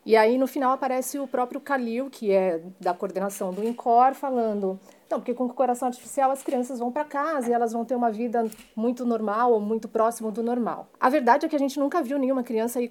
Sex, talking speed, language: female, 235 wpm, Portuguese